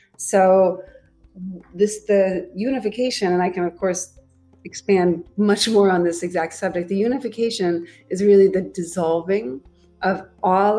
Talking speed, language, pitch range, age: 135 wpm, English, 170-200 Hz, 30-49